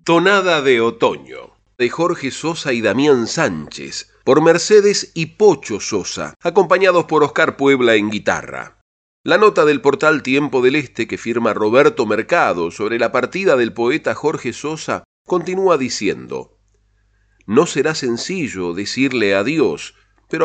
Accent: Argentinian